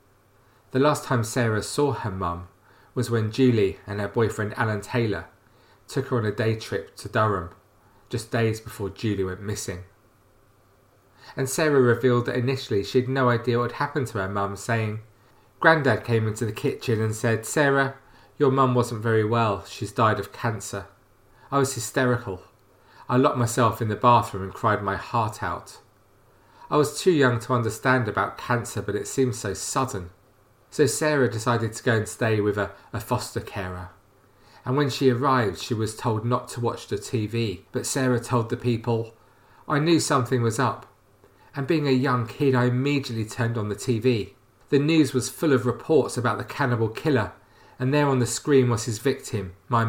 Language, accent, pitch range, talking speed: English, British, 100-125 Hz, 185 wpm